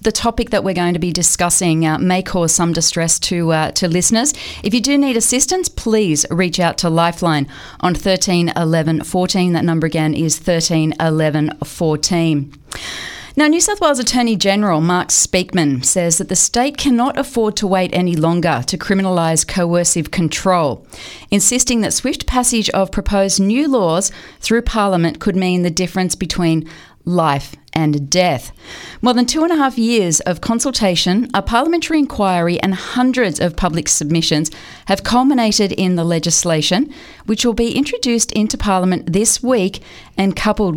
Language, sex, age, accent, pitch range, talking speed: English, female, 40-59, Australian, 165-215 Hz, 165 wpm